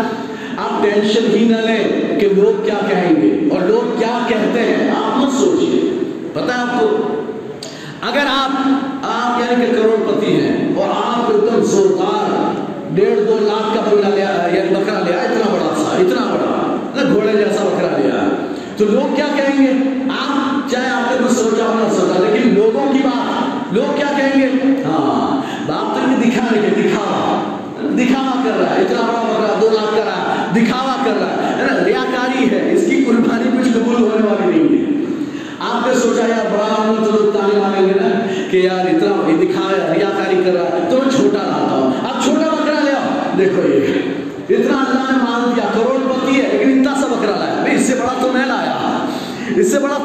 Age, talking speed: 40-59, 70 wpm